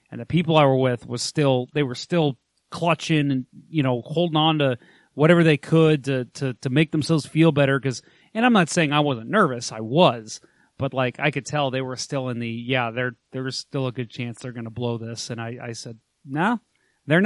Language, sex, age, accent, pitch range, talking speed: English, male, 30-49, American, 125-155 Hz, 235 wpm